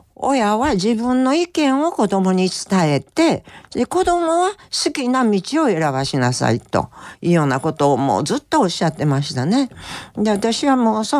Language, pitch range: Japanese, 145-220 Hz